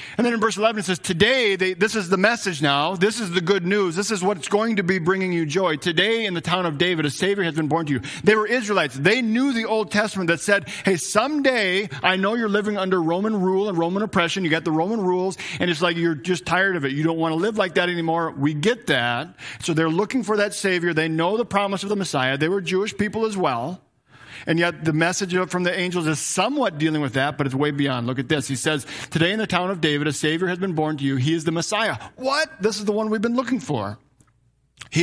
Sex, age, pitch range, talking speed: male, 40-59, 145-200 Hz, 265 wpm